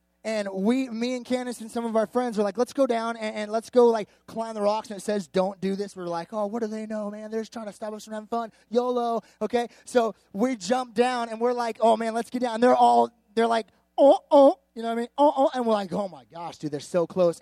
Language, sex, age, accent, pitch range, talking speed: English, male, 20-39, American, 180-235 Hz, 295 wpm